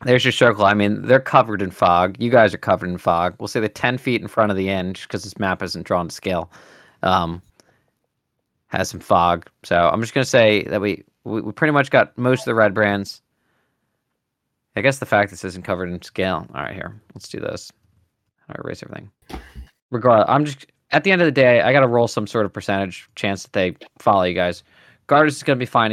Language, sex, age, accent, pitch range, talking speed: English, male, 20-39, American, 95-120 Hz, 225 wpm